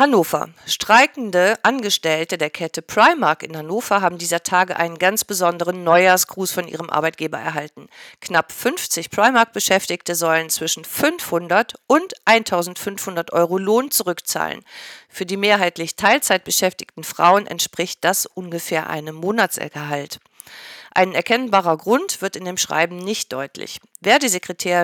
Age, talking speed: 50-69, 120 wpm